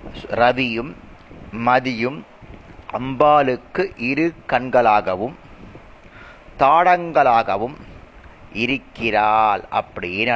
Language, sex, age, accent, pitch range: Tamil, male, 30-49, native, 120-180 Hz